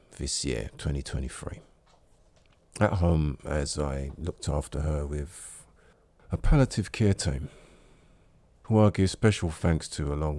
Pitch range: 75-95 Hz